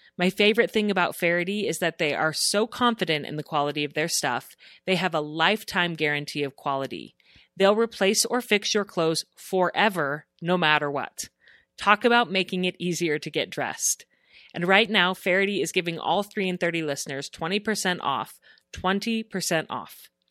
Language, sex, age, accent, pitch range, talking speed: English, female, 30-49, American, 150-195 Hz, 170 wpm